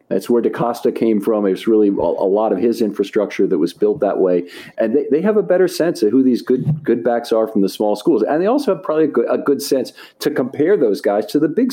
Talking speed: 270 wpm